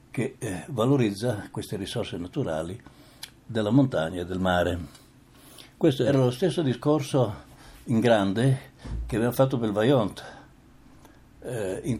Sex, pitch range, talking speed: male, 95-130 Hz, 120 wpm